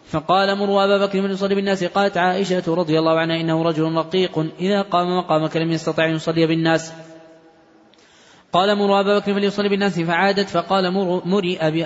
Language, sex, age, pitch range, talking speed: Arabic, male, 20-39, 160-180 Hz, 155 wpm